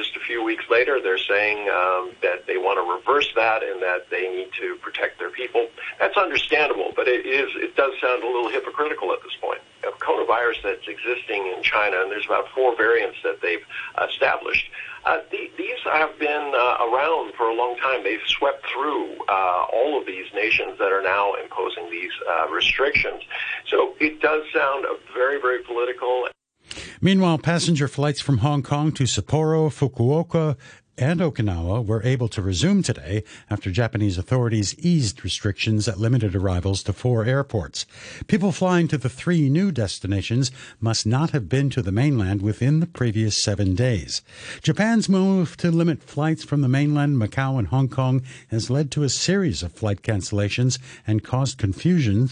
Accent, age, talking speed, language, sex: American, 50-69, 175 wpm, English, male